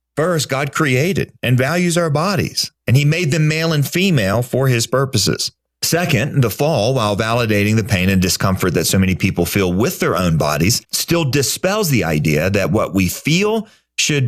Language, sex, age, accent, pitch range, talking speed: English, male, 40-59, American, 95-135 Hz, 185 wpm